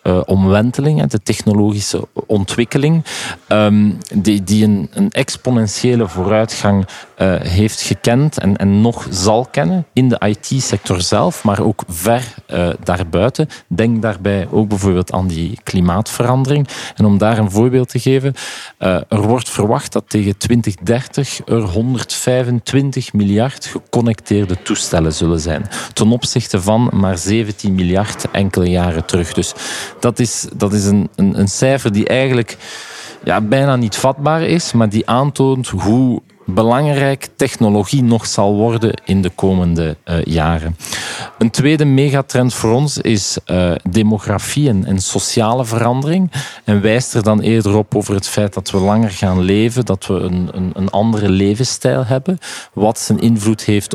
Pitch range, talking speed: 100-125 Hz, 145 wpm